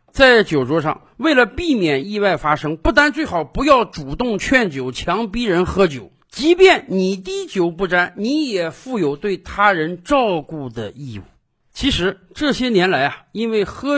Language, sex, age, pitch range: Chinese, male, 50-69, 160-245 Hz